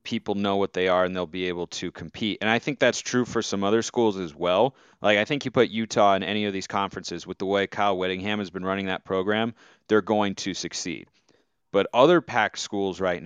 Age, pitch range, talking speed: 30-49, 100-115 Hz, 235 wpm